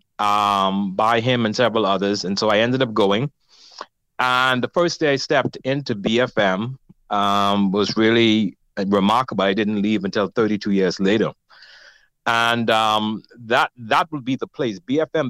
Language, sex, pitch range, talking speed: English, male, 100-120 Hz, 155 wpm